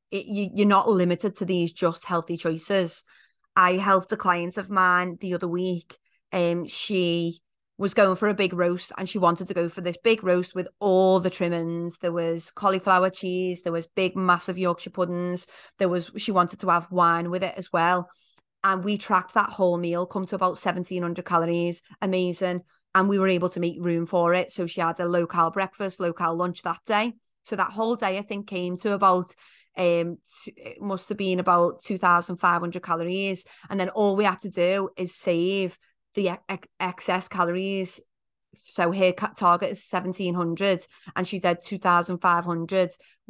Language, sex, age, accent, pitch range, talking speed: English, female, 30-49, British, 175-195 Hz, 180 wpm